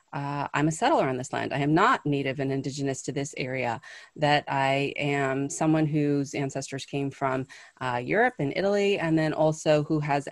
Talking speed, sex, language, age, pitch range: 190 wpm, female, English, 30-49, 135-175 Hz